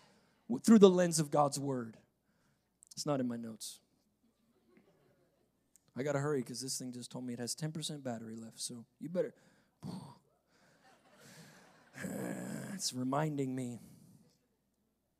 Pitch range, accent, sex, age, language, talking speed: 130-175 Hz, American, male, 30-49, English, 125 wpm